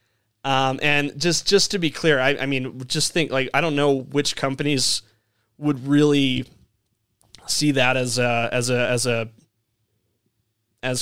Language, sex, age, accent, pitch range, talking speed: English, male, 20-39, American, 120-160 Hz, 160 wpm